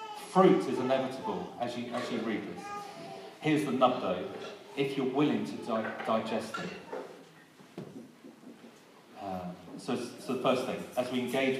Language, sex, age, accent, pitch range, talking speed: English, male, 40-59, British, 125-170 Hz, 150 wpm